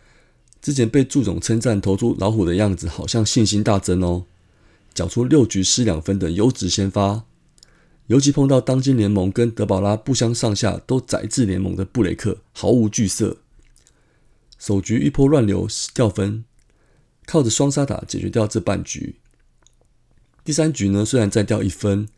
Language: Chinese